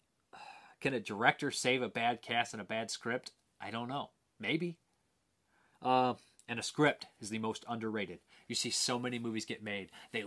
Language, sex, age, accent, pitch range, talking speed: English, male, 30-49, American, 120-145 Hz, 180 wpm